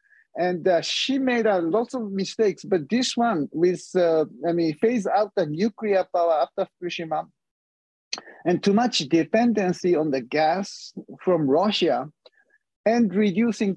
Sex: male